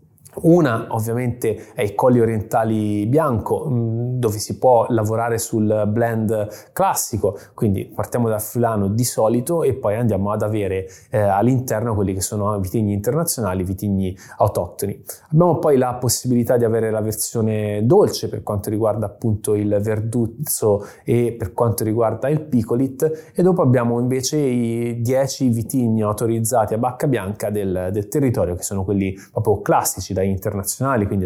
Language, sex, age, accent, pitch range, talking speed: Italian, male, 20-39, native, 100-125 Hz, 145 wpm